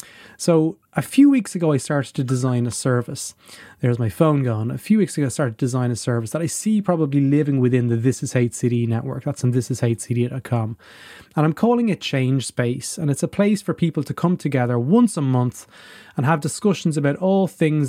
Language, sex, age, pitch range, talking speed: English, male, 30-49, 125-155 Hz, 215 wpm